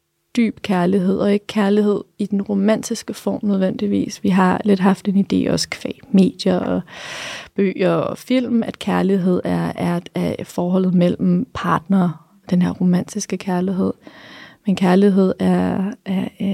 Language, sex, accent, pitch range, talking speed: Danish, female, native, 185-205 Hz, 140 wpm